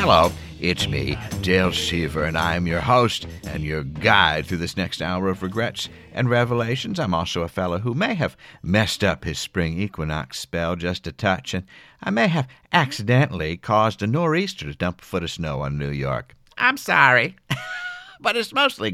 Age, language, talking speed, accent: 50-69, English, 185 wpm, American